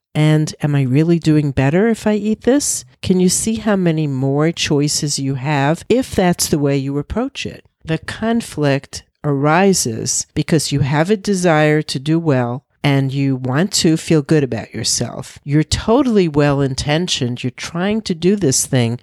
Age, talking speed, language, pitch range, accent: 50-69, 170 wpm, English, 140-185 Hz, American